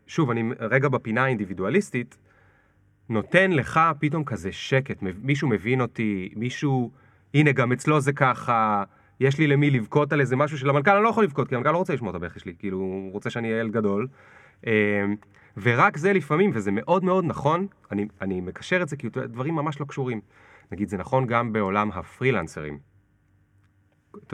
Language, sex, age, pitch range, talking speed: Hebrew, male, 30-49, 105-145 Hz, 170 wpm